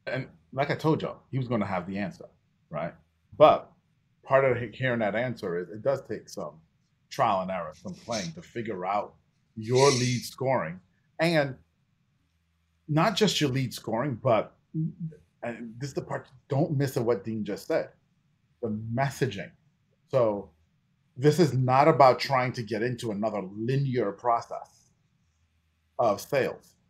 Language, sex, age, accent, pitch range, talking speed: English, male, 30-49, American, 115-155 Hz, 150 wpm